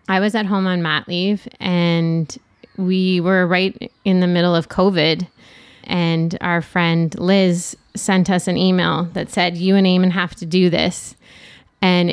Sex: female